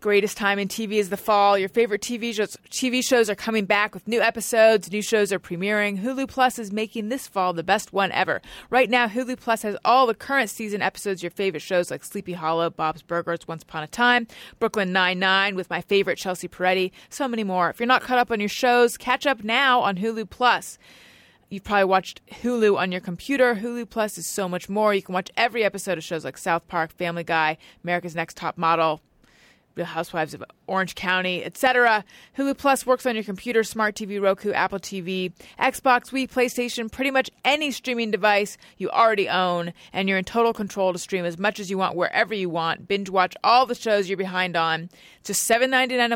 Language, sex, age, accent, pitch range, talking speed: English, female, 30-49, American, 185-235 Hz, 210 wpm